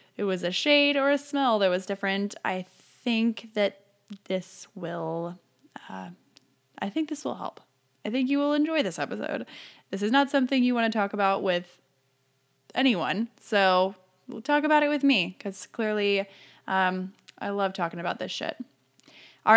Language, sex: English, female